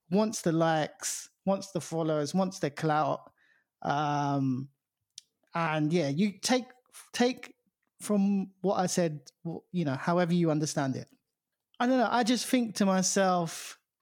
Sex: male